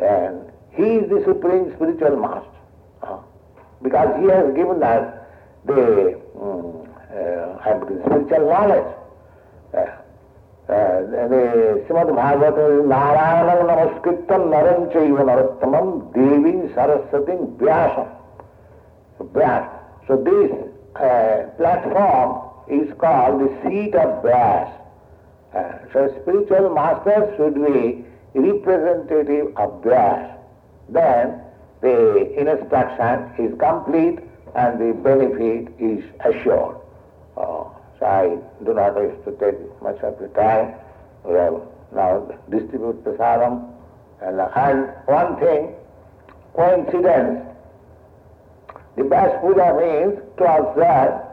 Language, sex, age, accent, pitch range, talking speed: English, male, 60-79, Indian, 125-205 Hz, 105 wpm